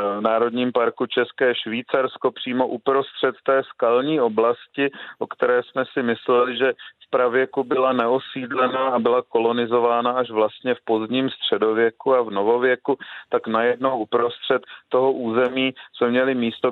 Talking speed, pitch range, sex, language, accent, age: 140 wpm, 120-135 Hz, male, Czech, native, 40-59